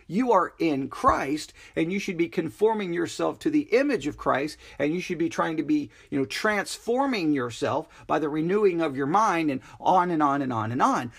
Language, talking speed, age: English, 215 wpm, 40-59